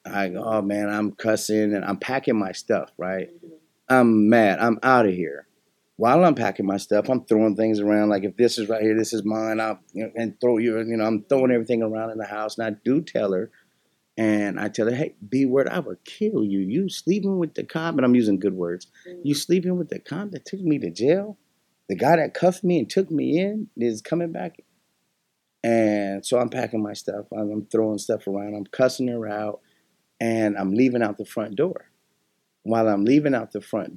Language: English